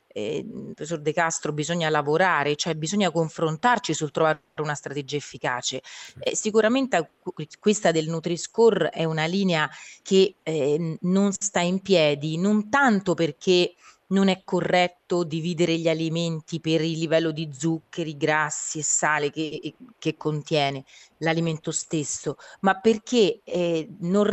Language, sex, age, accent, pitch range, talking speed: Italian, female, 30-49, native, 160-200 Hz, 135 wpm